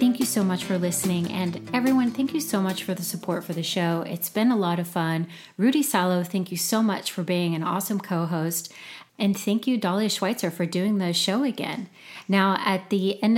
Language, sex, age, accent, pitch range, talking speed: English, female, 30-49, American, 175-210 Hz, 220 wpm